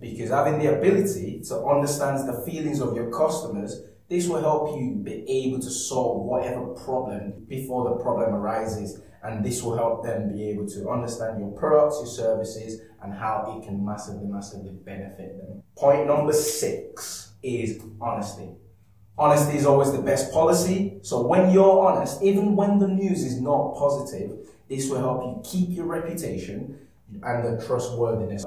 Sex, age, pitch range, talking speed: male, 20-39, 105-145 Hz, 165 wpm